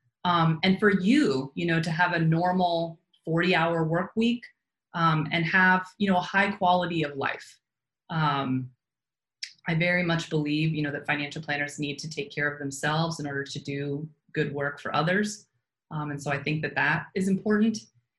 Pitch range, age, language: 150-180 Hz, 20-39, English